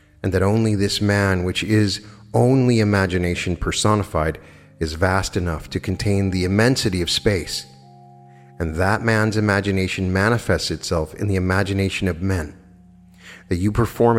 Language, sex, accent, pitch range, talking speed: English, male, American, 90-110 Hz, 140 wpm